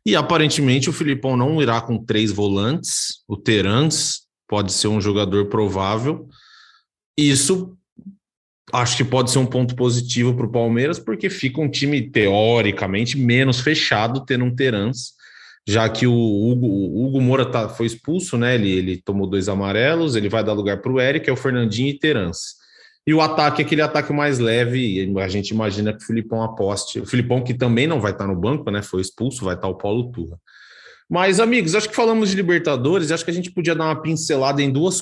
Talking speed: 195 wpm